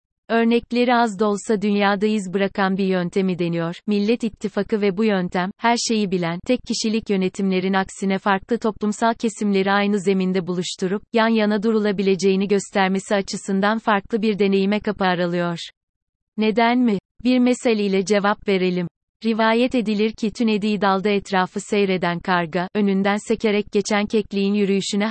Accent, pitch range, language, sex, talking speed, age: native, 195-225 Hz, Turkish, female, 140 wpm, 30-49